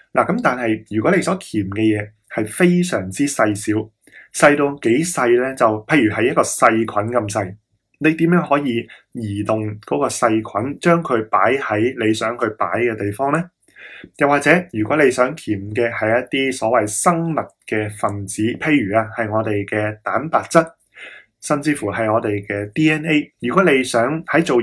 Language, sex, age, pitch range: Chinese, male, 20-39, 110-145 Hz